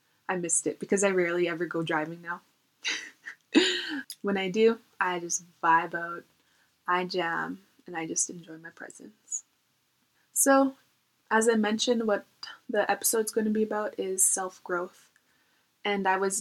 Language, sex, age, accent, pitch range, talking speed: English, female, 20-39, American, 180-220 Hz, 150 wpm